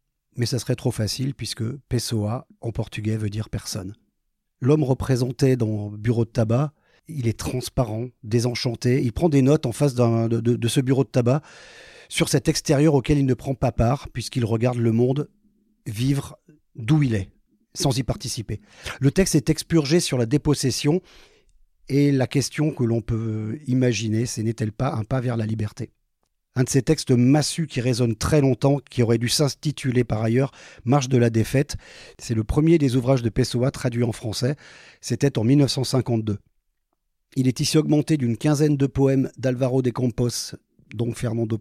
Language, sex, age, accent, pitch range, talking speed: French, male, 40-59, French, 115-145 Hz, 175 wpm